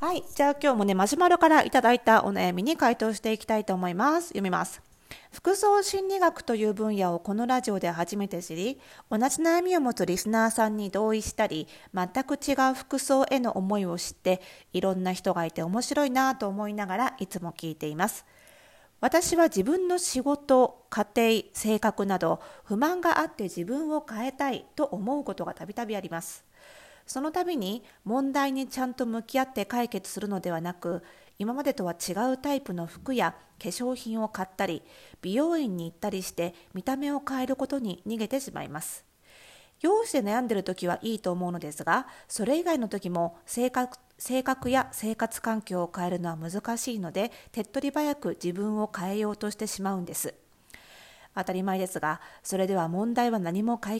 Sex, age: female, 40-59